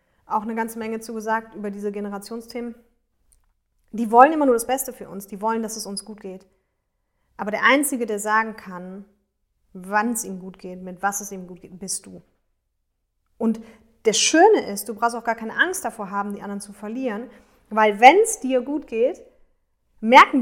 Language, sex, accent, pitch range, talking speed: German, female, German, 200-245 Hz, 190 wpm